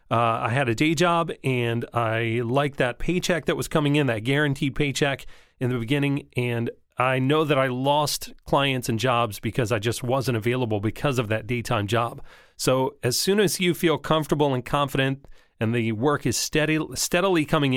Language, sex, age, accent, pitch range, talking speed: English, male, 30-49, American, 120-150 Hz, 185 wpm